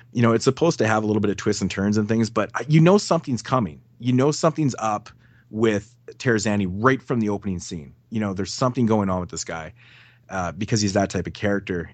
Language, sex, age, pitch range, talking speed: English, male, 30-49, 100-125 Hz, 235 wpm